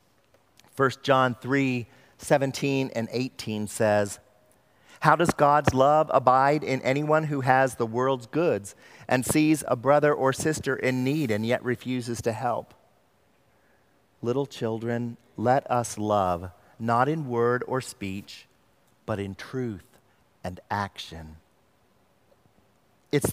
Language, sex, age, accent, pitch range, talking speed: English, male, 40-59, American, 115-145 Hz, 125 wpm